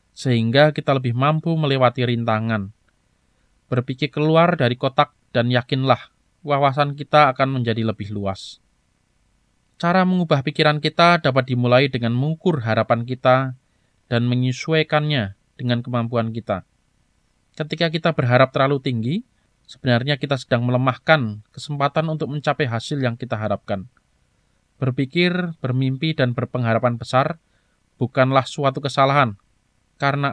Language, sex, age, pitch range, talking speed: Indonesian, male, 20-39, 120-150 Hz, 115 wpm